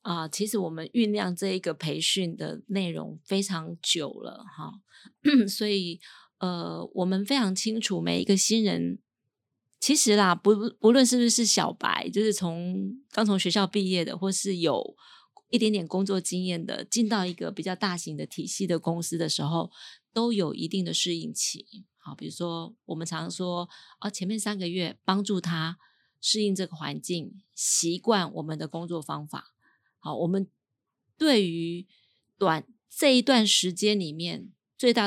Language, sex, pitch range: Chinese, female, 170-215 Hz